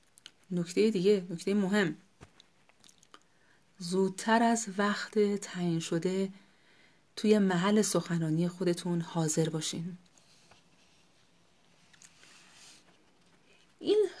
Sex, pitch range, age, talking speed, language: female, 180-225 Hz, 30-49, 70 wpm, Persian